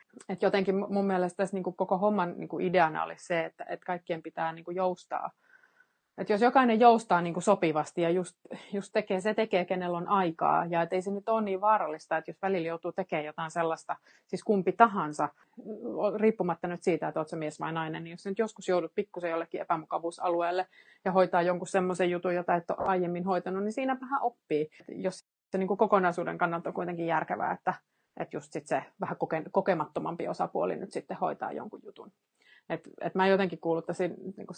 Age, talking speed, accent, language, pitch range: 30-49, 190 wpm, native, Finnish, 175-225 Hz